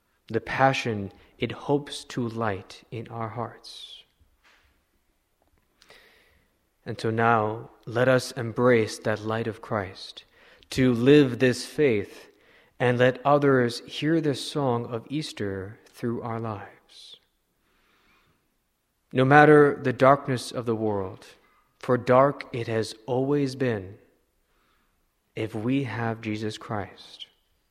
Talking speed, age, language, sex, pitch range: 115 wpm, 20-39, English, male, 110-135 Hz